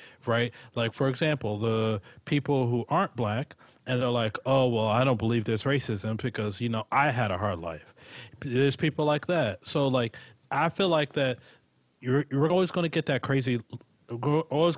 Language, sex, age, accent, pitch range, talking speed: English, male, 30-49, American, 115-140 Hz, 185 wpm